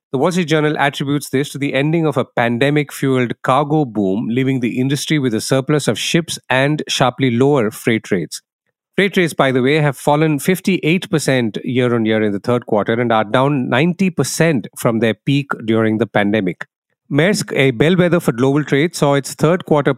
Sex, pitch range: male, 120-150 Hz